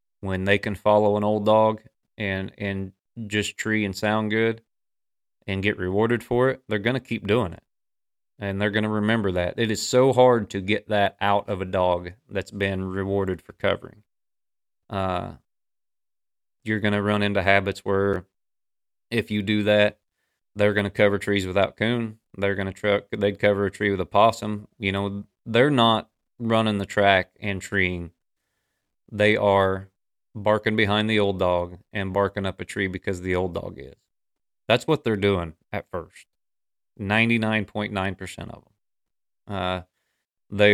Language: English